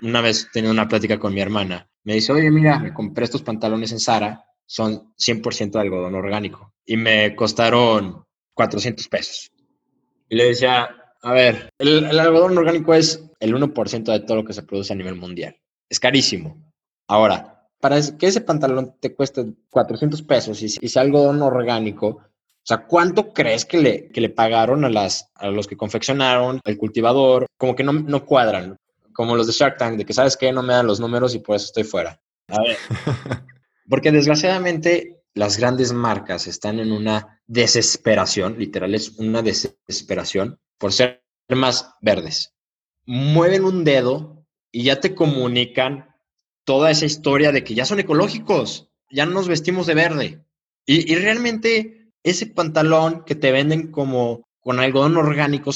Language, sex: Spanish, male